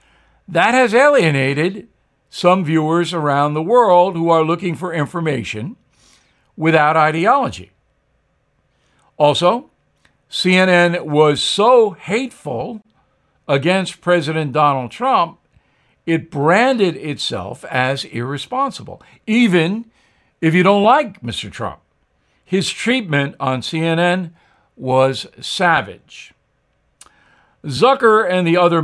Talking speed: 95 wpm